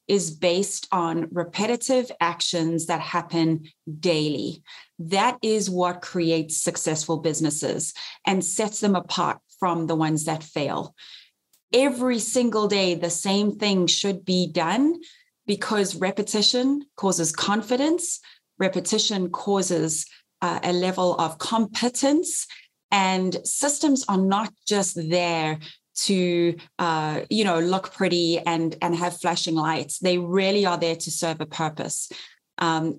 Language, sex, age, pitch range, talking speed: English, female, 30-49, 165-205 Hz, 125 wpm